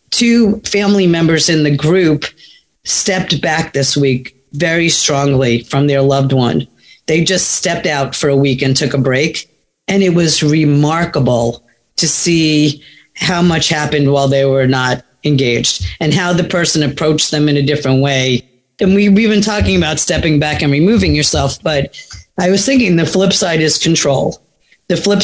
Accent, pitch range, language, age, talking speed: American, 145-185 Hz, English, 40-59, 170 wpm